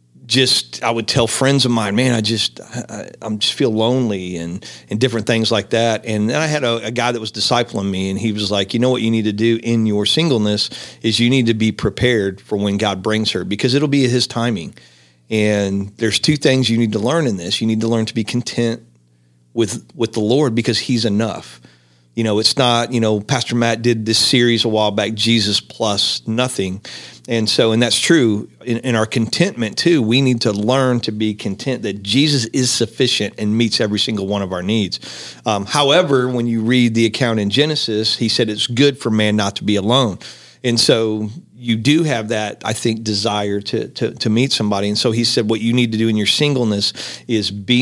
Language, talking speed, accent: English, 225 wpm, American